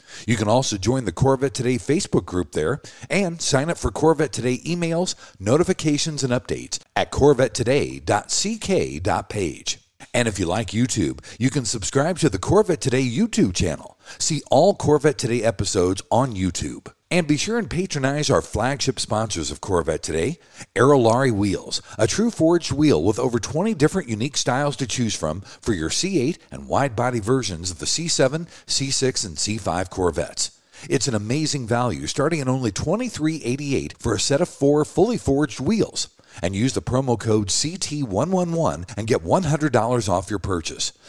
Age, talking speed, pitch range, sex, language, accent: 50-69, 160 wpm, 110-155 Hz, male, English, American